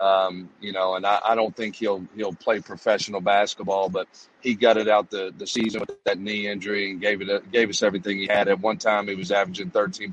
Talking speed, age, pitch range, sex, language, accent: 235 wpm, 40-59, 100-110 Hz, male, English, American